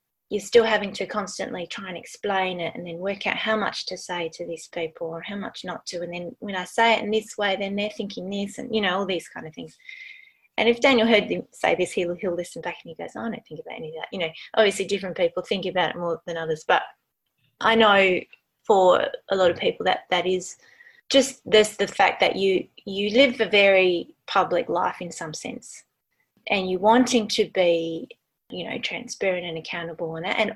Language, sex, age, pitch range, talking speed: English, female, 20-39, 180-230 Hz, 230 wpm